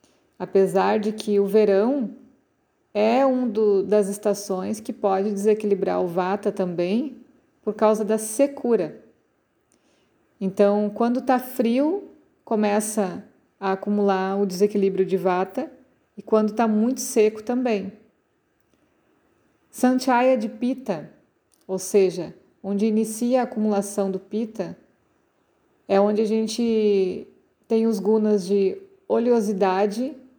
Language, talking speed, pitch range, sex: Portuguese, 110 wpm, 195-230 Hz, female